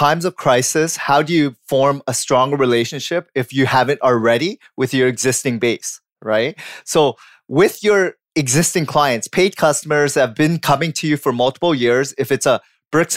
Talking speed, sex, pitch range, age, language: 180 wpm, male, 130-165 Hz, 30-49, English